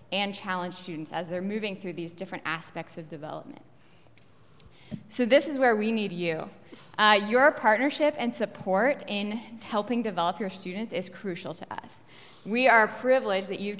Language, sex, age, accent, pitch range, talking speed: English, female, 10-29, American, 185-235 Hz, 165 wpm